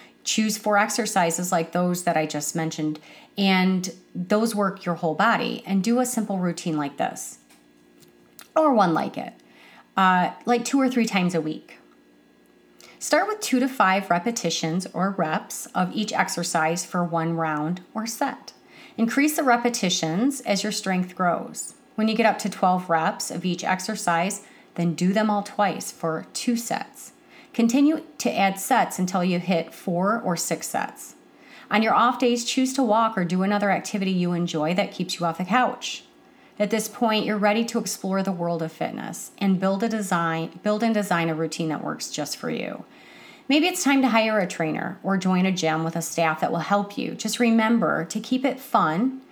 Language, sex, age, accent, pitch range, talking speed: English, female, 30-49, American, 170-225 Hz, 185 wpm